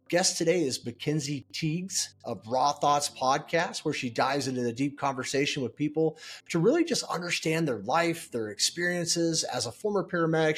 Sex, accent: male, American